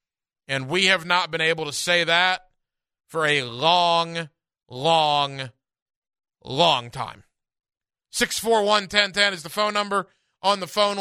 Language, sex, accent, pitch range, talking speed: English, male, American, 160-200 Hz, 125 wpm